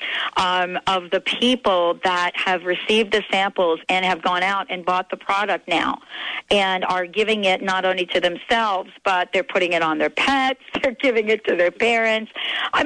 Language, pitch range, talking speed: English, 180-230 Hz, 185 wpm